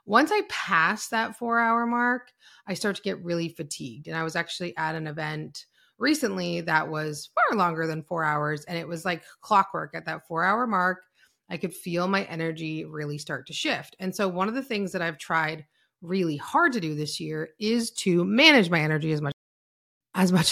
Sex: female